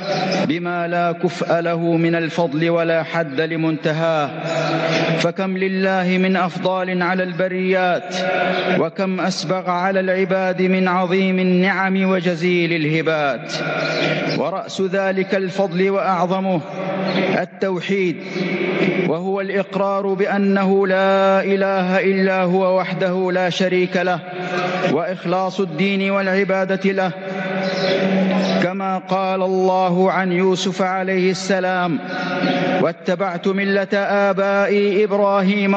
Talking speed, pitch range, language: 90 wpm, 175-195 Hz, English